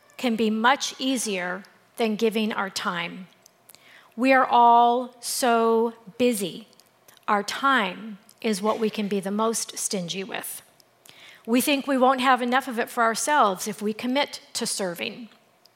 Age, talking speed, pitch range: 40-59, 150 wpm, 215-270 Hz